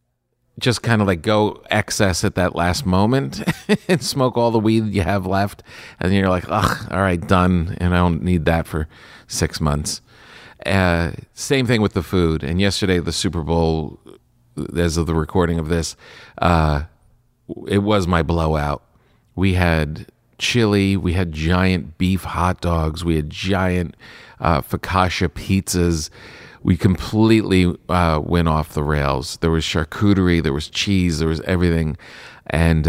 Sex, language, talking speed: male, English, 160 wpm